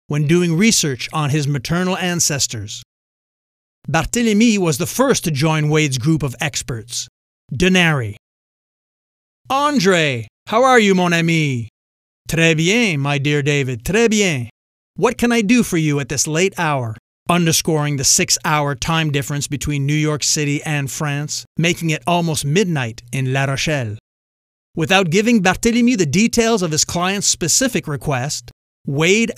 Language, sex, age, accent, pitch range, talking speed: English, male, 30-49, American, 140-185 Hz, 145 wpm